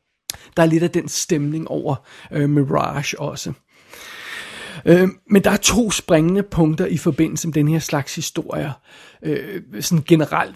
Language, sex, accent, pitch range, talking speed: Danish, male, native, 155-195 Hz, 155 wpm